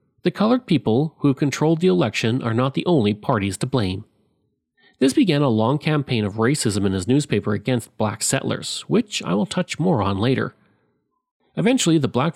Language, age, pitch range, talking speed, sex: English, 40-59, 105-155 Hz, 180 wpm, male